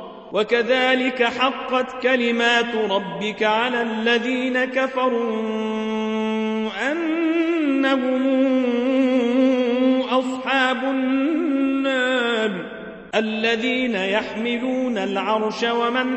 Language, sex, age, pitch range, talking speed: Arabic, male, 40-59, 230-260 Hz, 50 wpm